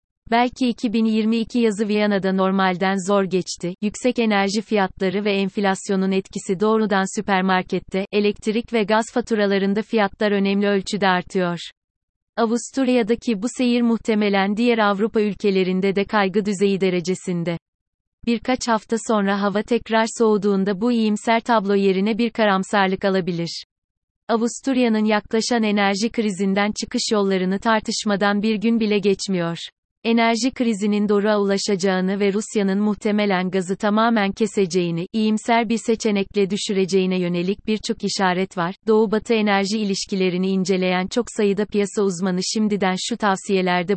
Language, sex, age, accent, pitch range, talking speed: Turkish, female, 30-49, native, 190-225 Hz, 120 wpm